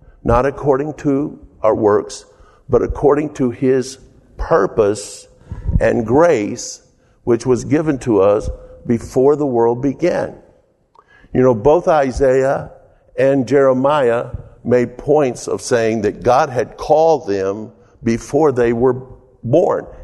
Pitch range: 120-150 Hz